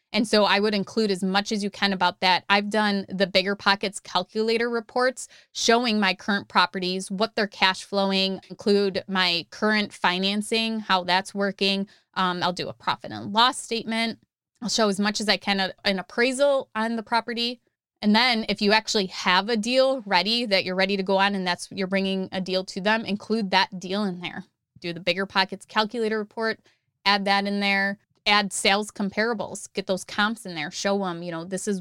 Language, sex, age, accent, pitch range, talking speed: English, female, 20-39, American, 190-220 Hz, 200 wpm